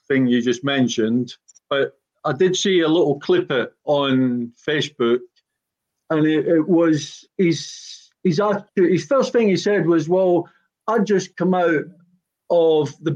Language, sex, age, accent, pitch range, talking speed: English, male, 50-69, British, 125-170 Hz, 150 wpm